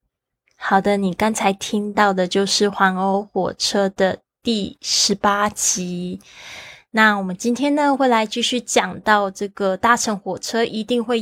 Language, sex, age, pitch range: Chinese, female, 20-39, 185-215 Hz